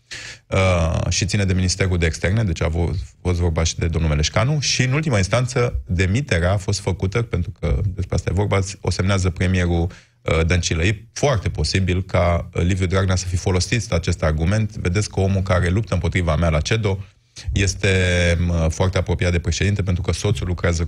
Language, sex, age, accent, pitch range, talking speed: Romanian, male, 20-39, native, 85-105 Hz, 170 wpm